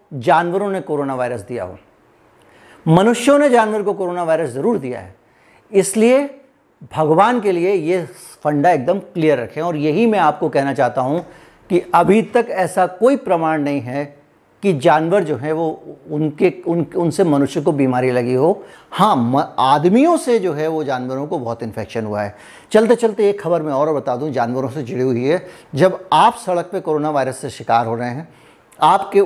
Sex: male